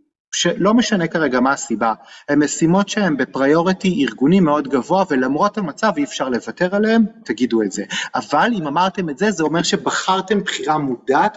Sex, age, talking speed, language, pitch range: male, 30-49, 160 wpm, Hebrew, 145-205 Hz